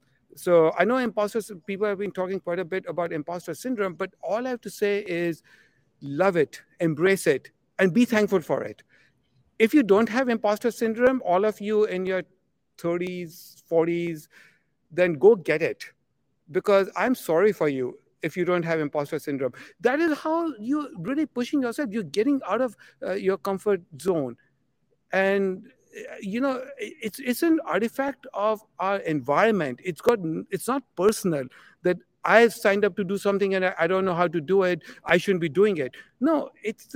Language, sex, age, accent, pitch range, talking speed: English, male, 60-79, Indian, 165-225 Hz, 180 wpm